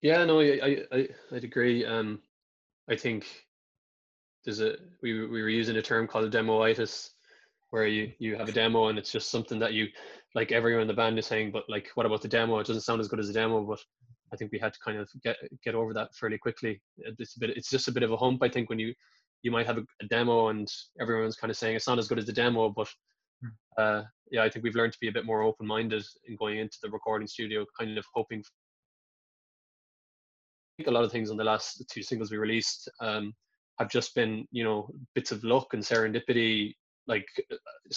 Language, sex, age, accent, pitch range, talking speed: English, male, 20-39, Irish, 110-120 Hz, 230 wpm